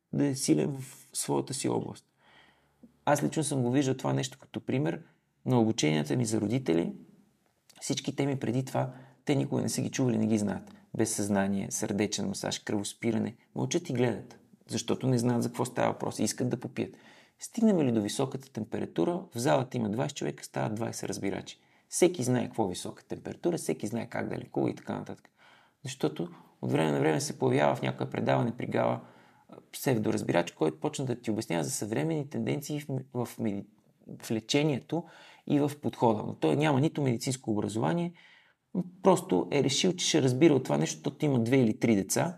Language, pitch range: Bulgarian, 110-145 Hz